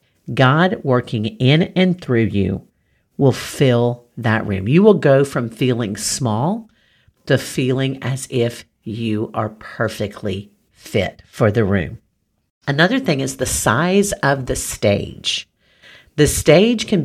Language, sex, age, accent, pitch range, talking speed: English, female, 50-69, American, 110-150 Hz, 135 wpm